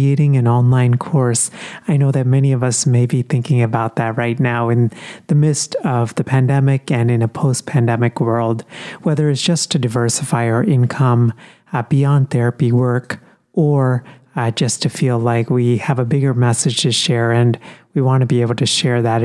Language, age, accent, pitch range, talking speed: English, 30-49, American, 120-145 Hz, 185 wpm